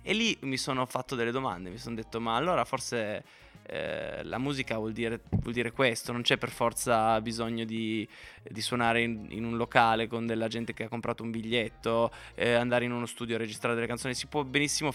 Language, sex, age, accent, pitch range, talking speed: Italian, male, 20-39, native, 115-140 Hz, 210 wpm